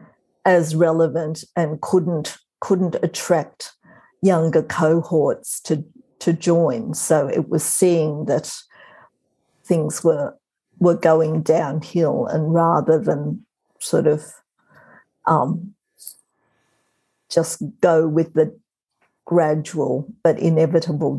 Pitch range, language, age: 160-180 Hz, English, 50-69